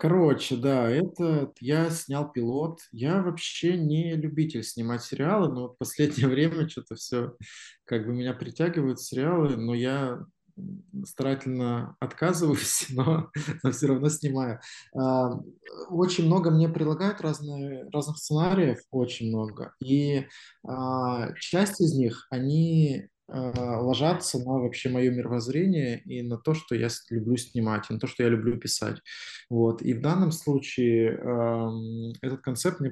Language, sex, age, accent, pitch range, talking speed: Russian, male, 20-39, native, 120-150 Hz, 135 wpm